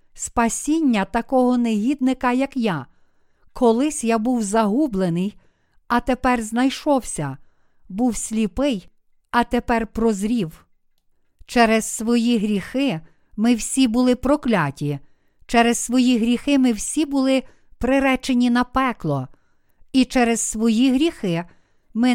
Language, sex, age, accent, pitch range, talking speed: Ukrainian, female, 50-69, native, 215-265 Hz, 105 wpm